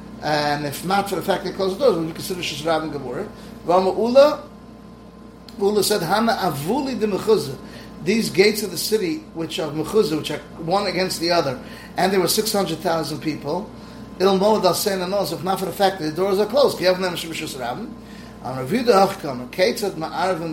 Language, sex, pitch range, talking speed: English, male, 160-205 Hz, 200 wpm